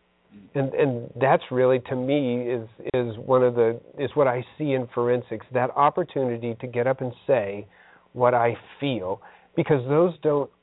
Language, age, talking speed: English, 50-69, 170 wpm